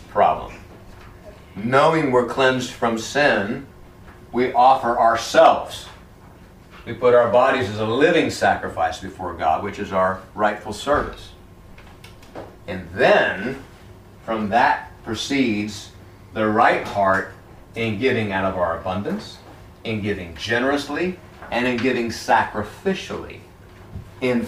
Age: 40-59